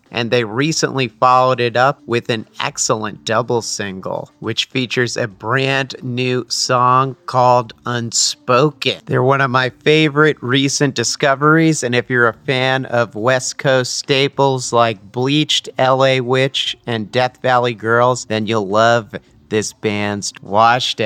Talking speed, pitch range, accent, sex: 140 wpm, 115-135 Hz, American, male